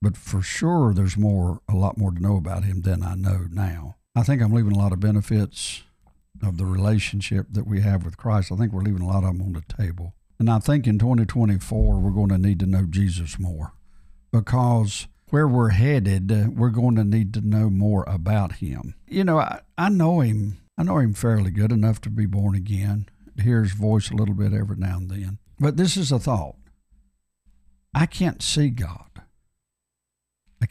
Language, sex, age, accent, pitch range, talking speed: English, male, 60-79, American, 95-125 Hz, 205 wpm